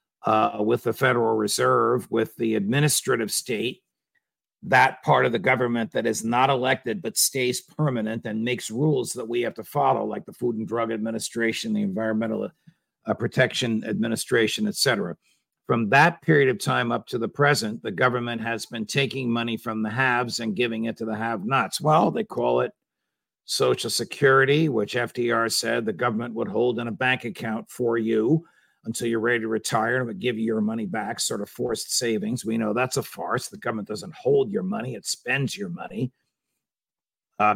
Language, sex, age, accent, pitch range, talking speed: English, male, 50-69, American, 115-135 Hz, 185 wpm